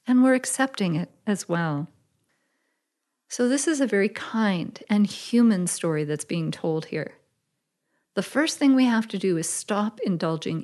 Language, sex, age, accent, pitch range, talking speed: English, female, 40-59, American, 170-230 Hz, 165 wpm